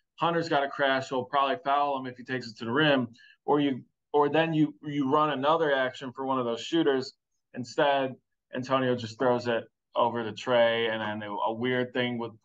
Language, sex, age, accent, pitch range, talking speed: English, male, 20-39, American, 120-145 Hz, 205 wpm